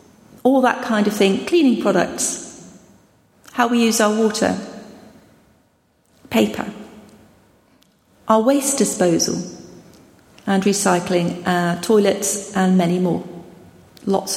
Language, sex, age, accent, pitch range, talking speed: English, female, 40-59, British, 185-225 Hz, 100 wpm